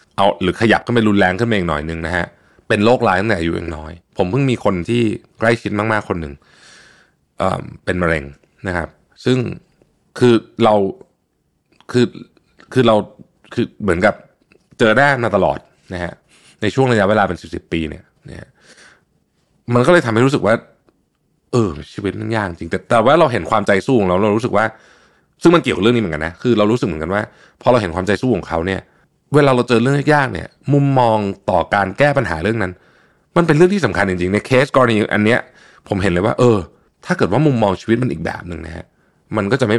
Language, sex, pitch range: Thai, male, 90-125 Hz